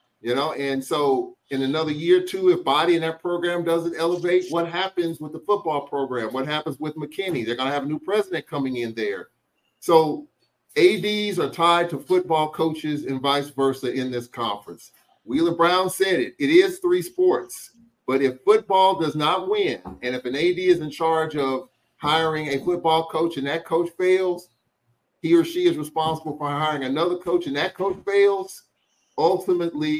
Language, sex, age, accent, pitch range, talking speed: English, male, 40-59, American, 135-180 Hz, 185 wpm